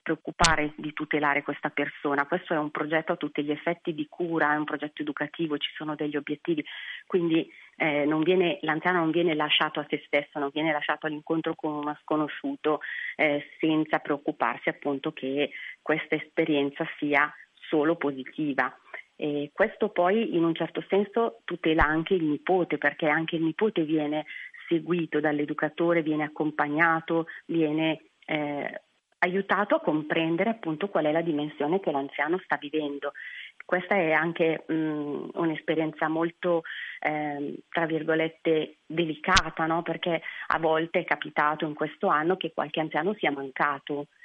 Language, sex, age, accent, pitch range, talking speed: Italian, female, 40-59, native, 150-170 Hz, 145 wpm